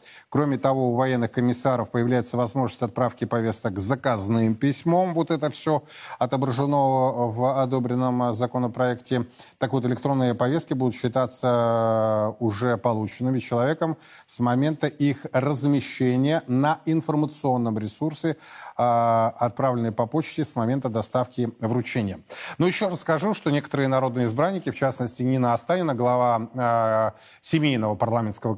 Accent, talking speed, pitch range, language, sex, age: native, 120 wpm, 115-140 Hz, Russian, male, 20-39